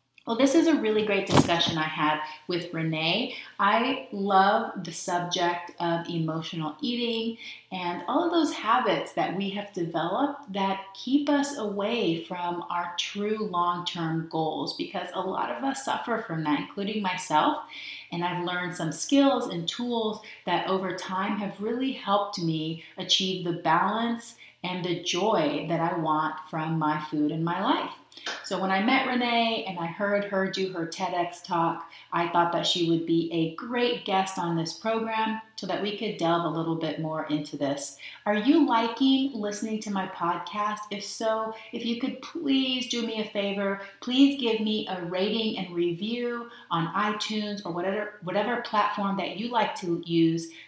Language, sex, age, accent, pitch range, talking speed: English, female, 30-49, American, 170-220 Hz, 175 wpm